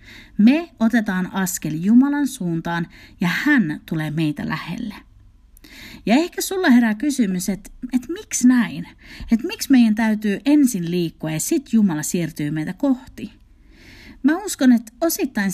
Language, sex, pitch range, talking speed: Finnish, female, 165-255 Hz, 130 wpm